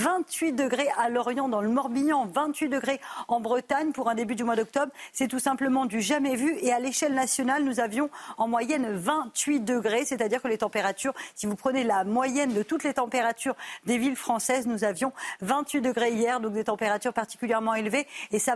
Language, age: French, 40-59